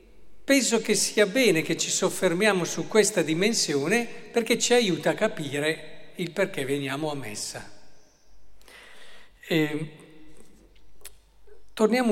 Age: 50-69